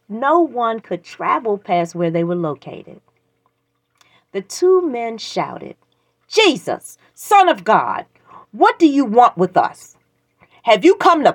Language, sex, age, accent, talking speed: English, female, 40-59, American, 145 wpm